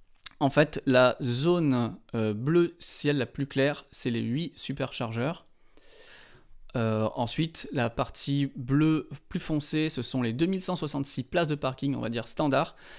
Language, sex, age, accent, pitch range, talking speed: French, male, 20-39, French, 130-175 Hz, 150 wpm